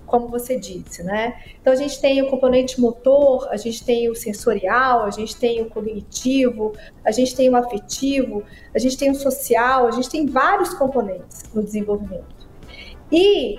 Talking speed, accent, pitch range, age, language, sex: 170 wpm, Brazilian, 245-310 Hz, 40-59, Portuguese, female